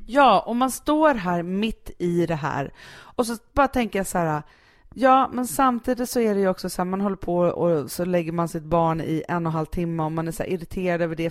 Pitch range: 155-215 Hz